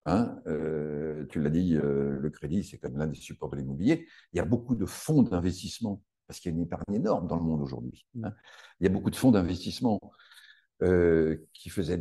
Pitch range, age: 85-120 Hz, 50-69